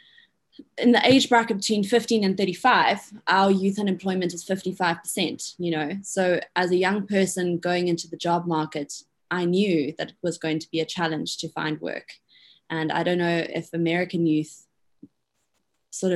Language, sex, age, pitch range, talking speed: English, female, 20-39, 165-195 Hz, 170 wpm